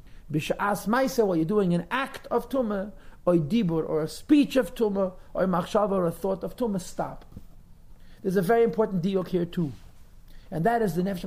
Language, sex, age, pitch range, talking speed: English, male, 50-69, 185-240 Hz, 210 wpm